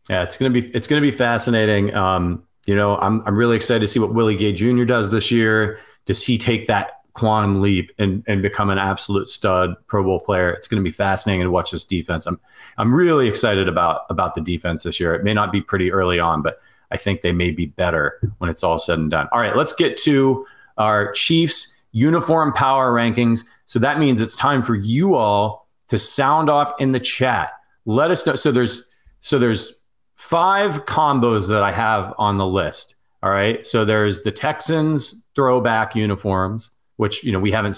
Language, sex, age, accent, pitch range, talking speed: English, male, 30-49, American, 95-120 Hz, 210 wpm